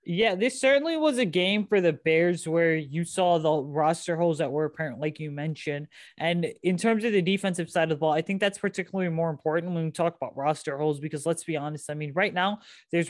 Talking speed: 240 wpm